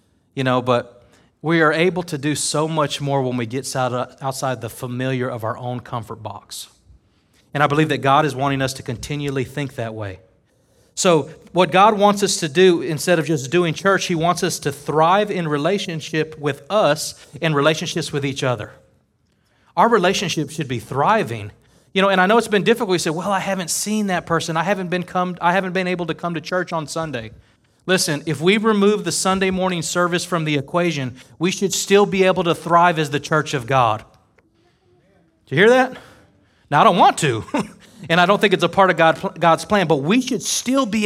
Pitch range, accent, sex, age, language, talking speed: 145-185 Hz, American, male, 30-49, English, 210 wpm